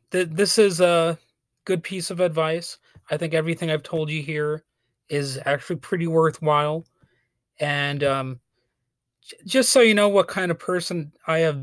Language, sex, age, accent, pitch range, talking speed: English, male, 30-49, American, 130-165 Hz, 155 wpm